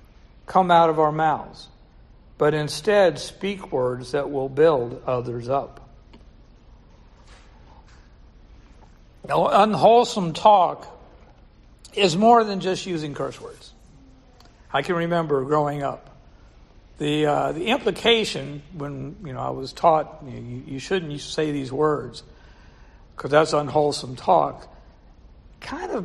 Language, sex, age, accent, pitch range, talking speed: English, male, 60-79, American, 135-175 Hz, 115 wpm